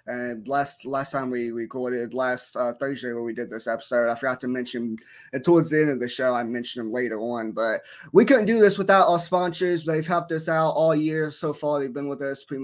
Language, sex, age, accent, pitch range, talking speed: English, male, 20-39, American, 135-165 Hz, 240 wpm